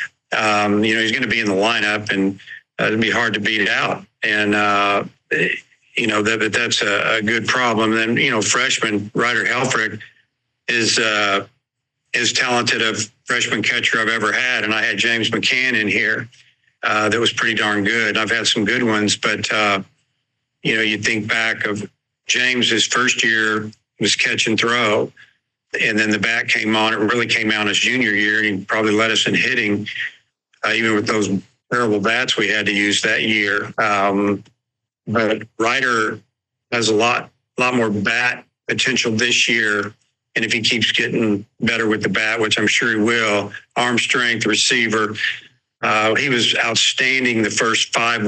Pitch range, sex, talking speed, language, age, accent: 105-115 Hz, male, 185 wpm, English, 50-69, American